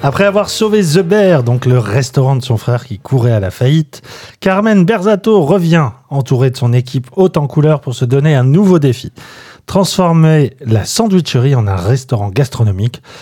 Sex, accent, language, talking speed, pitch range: male, French, French, 175 wpm, 120-185 Hz